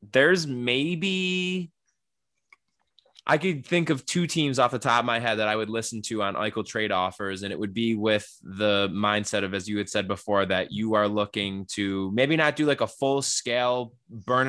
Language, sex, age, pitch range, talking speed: English, male, 20-39, 105-150 Hz, 205 wpm